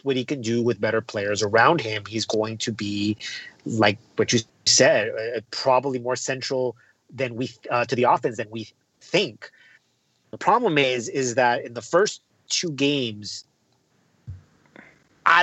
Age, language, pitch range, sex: 30-49, English, 120-150 Hz, male